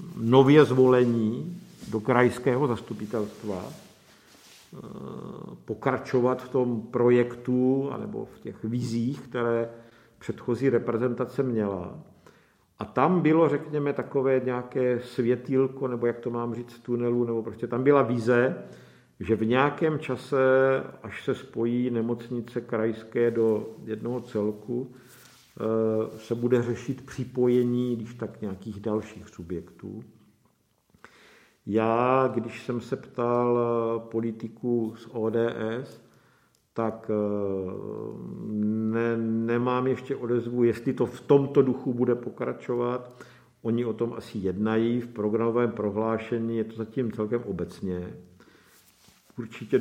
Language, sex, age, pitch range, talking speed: Czech, male, 50-69, 115-125 Hz, 105 wpm